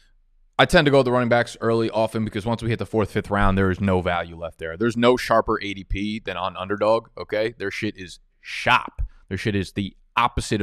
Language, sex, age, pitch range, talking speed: English, male, 20-39, 90-110 Hz, 230 wpm